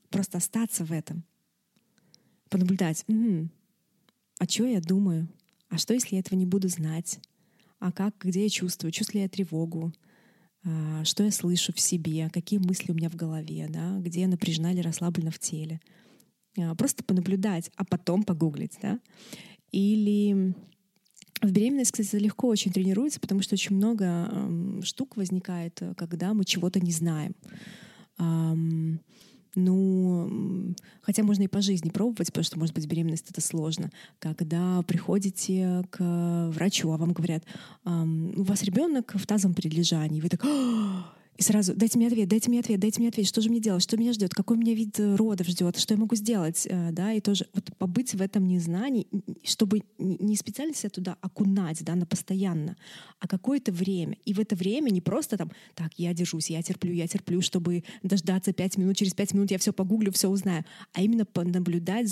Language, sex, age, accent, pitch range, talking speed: Russian, female, 20-39, native, 175-210 Hz, 165 wpm